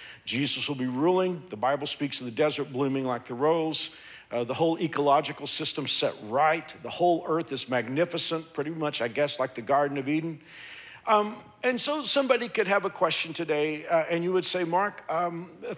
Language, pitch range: English, 125-165 Hz